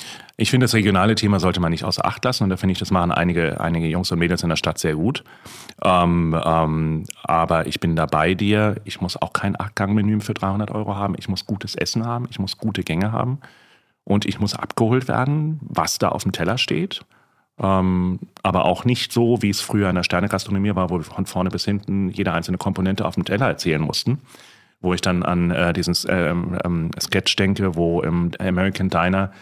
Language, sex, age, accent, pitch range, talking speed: German, male, 30-49, German, 90-120 Hz, 215 wpm